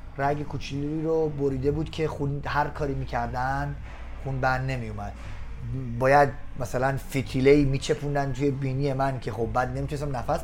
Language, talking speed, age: Persian, 150 wpm, 30-49